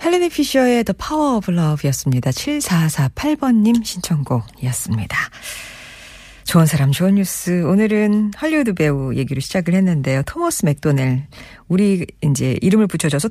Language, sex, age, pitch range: Korean, female, 40-59, 145-225 Hz